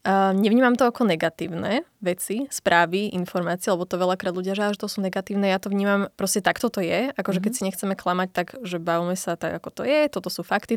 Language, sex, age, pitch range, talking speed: Slovak, female, 20-39, 185-215 Hz, 215 wpm